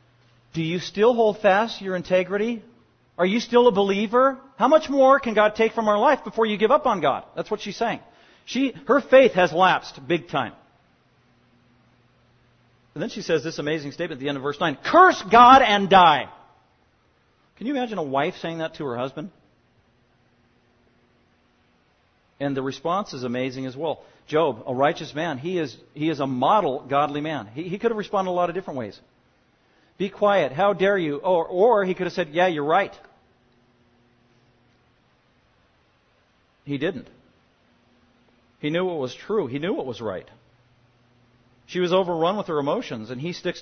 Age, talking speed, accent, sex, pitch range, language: 40-59, 175 wpm, American, male, 140-200 Hz, English